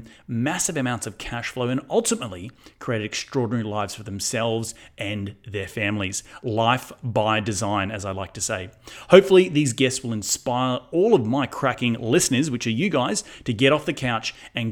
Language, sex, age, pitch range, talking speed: English, male, 30-49, 105-130 Hz, 175 wpm